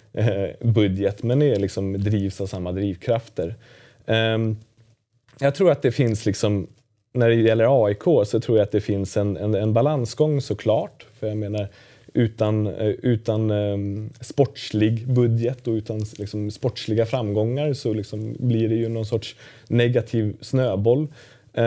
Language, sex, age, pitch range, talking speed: Swedish, male, 30-49, 100-120 Hz, 135 wpm